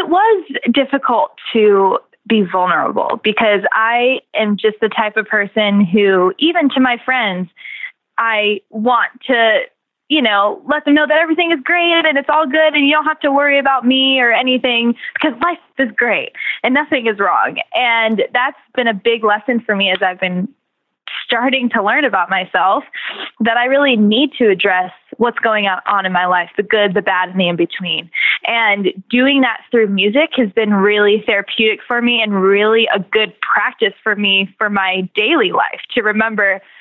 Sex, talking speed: female, 185 wpm